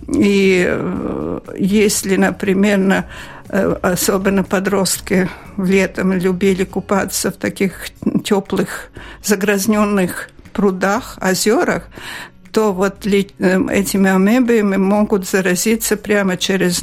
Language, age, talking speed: Russian, 60-79, 80 wpm